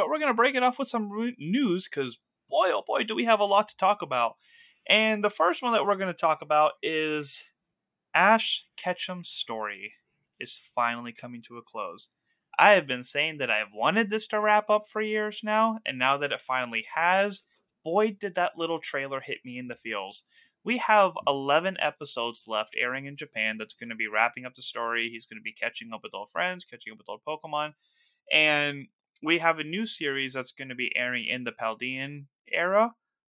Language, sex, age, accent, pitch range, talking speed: English, male, 20-39, American, 130-210 Hz, 215 wpm